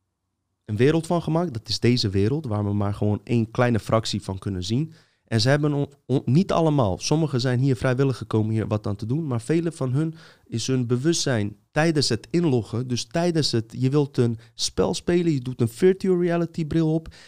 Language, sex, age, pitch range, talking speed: Dutch, male, 30-49, 110-160 Hz, 210 wpm